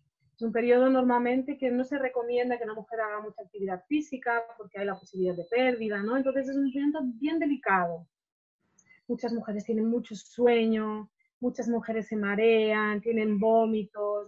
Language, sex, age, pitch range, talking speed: Spanish, female, 30-49, 205-265 Hz, 165 wpm